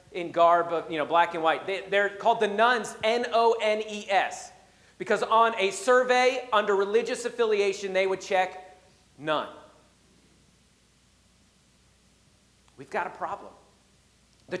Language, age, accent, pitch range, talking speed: English, 40-59, American, 205-245 Hz, 120 wpm